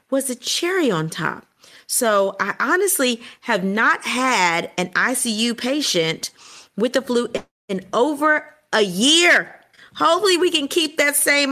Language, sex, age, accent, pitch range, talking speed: English, female, 40-59, American, 185-285 Hz, 140 wpm